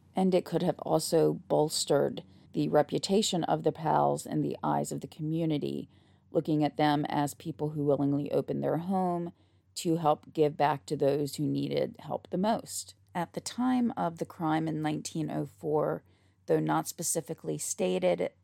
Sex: female